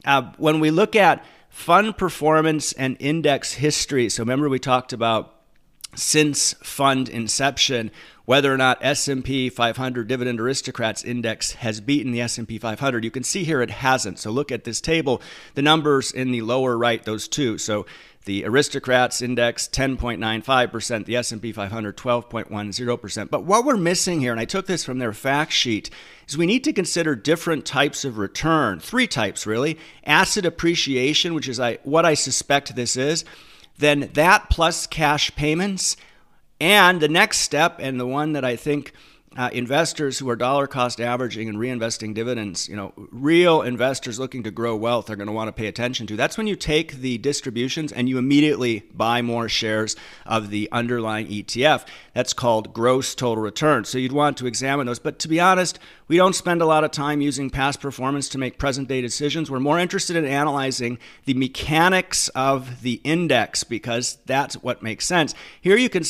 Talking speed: 180 wpm